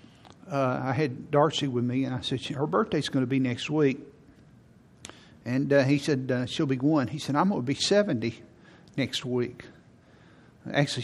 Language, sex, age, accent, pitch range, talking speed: English, male, 60-79, American, 130-155 Hz, 190 wpm